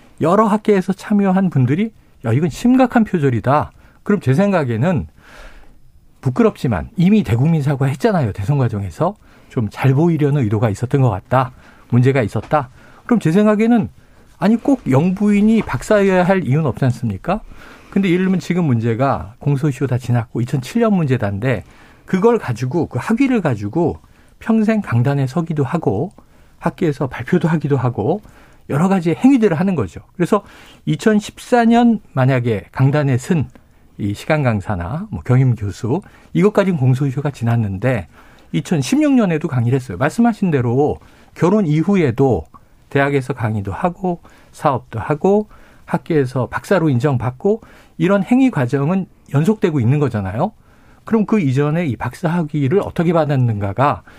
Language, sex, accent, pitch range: Korean, male, native, 125-195 Hz